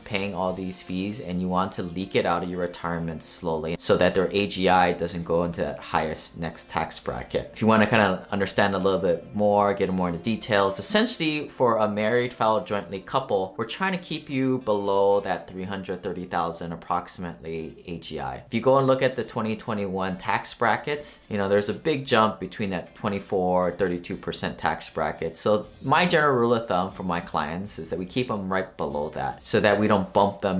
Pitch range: 85-110 Hz